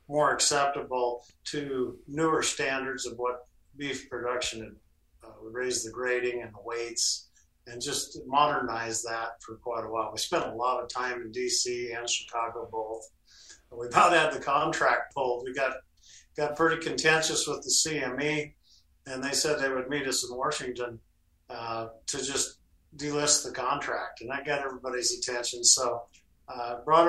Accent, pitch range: American, 110-145 Hz